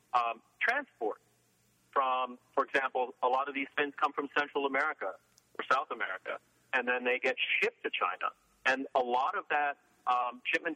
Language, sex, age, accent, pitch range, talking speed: English, male, 40-59, American, 125-145 Hz, 175 wpm